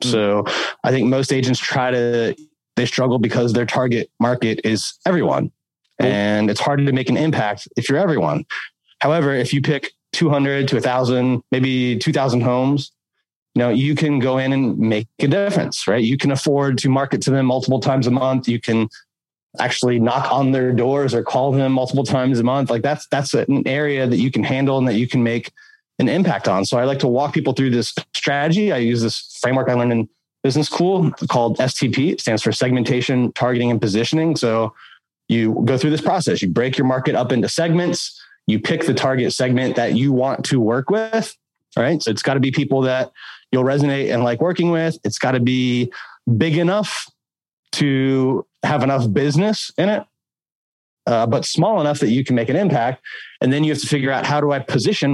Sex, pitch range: male, 120-145 Hz